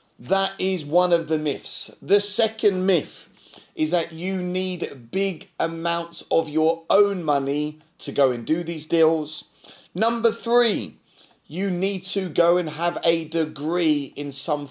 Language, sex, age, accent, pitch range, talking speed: English, male, 30-49, British, 140-180 Hz, 150 wpm